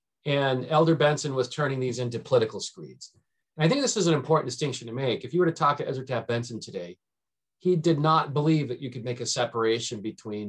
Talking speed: 225 wpm